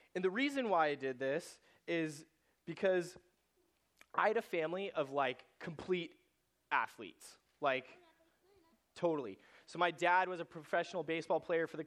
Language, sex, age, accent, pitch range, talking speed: English, male, 30-49, American, 140-170 Hz, 145 wpm